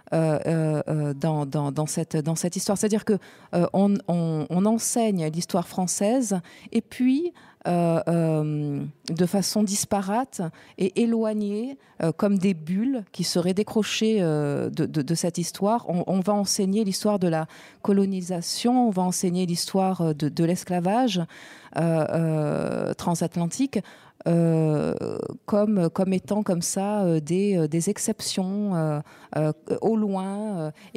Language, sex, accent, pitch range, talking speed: French, female, French, 165-205 Hz, 140 wpm